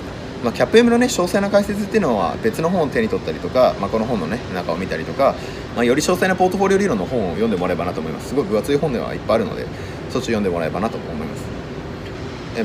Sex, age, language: male, 30-49, Japanese